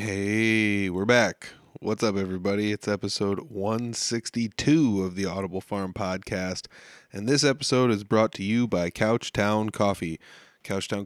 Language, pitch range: English, 100-120 Hz